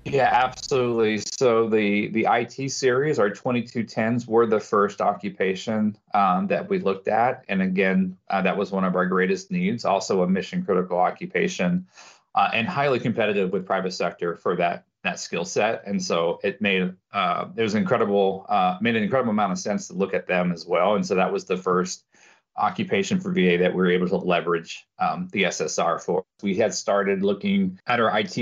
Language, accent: English, American